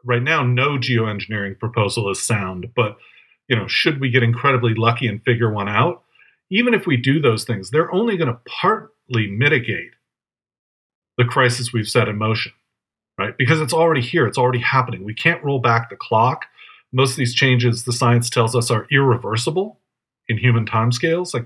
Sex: male